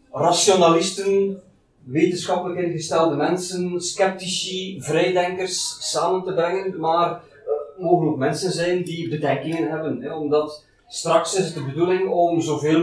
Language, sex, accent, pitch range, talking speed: Dutch, male, Dutch, 145-175 Hz, 120 wpm